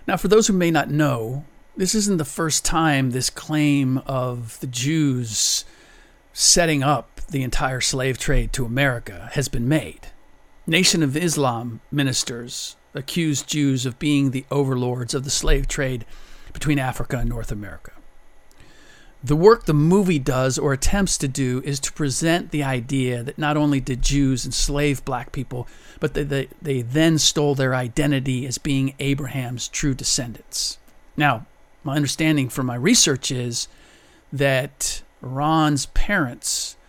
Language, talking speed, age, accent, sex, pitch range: English, 150 wpm, 50-69, American, male, 125-150 Hz